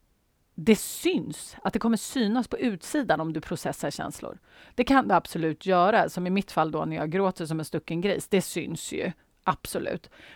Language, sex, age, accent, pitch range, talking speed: Swedish, female, 30-49, native, 160-230 Hz, 190 wpm